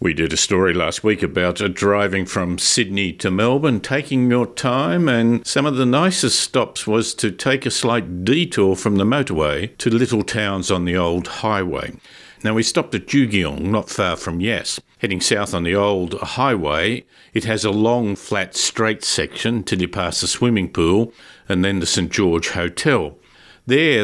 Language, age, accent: English, 50-69, Australian